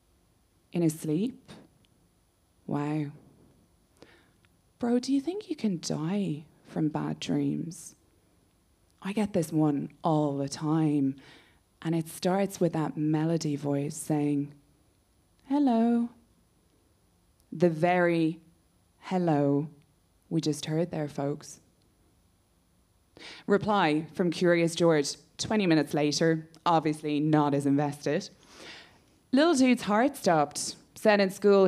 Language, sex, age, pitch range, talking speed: English, female, 20-39, 135-180 Hz, 105 wpm